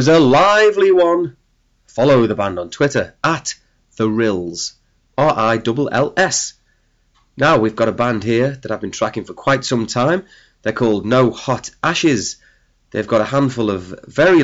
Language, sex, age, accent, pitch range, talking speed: English, male, 30-49, British, 100-130 Hz, 155 wpm